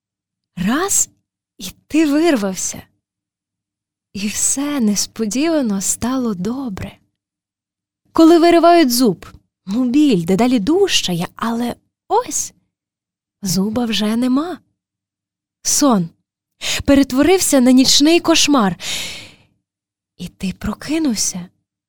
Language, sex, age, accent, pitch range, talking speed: Ukrainian, female, 20-39, native, 195-290 Hz, 75 wpm